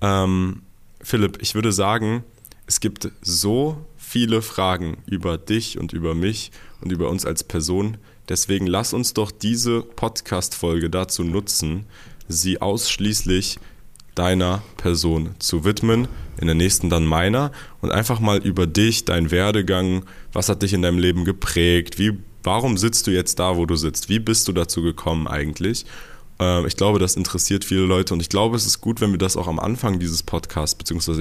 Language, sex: German, male